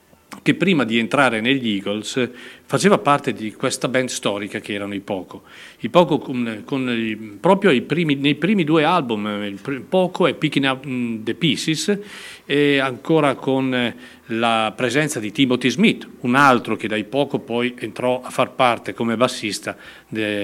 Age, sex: 40-59, male